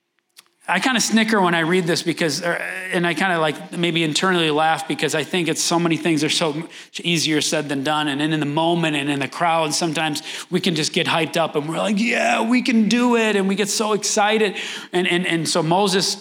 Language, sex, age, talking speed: English, male, 30-49, 235 wpm